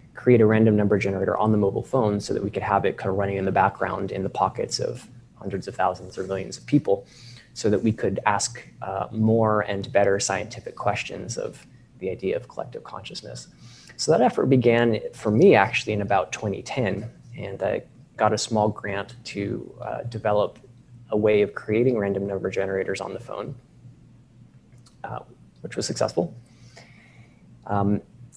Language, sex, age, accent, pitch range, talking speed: English, male, 20-39, American, 105-120 Hz, 175 wpm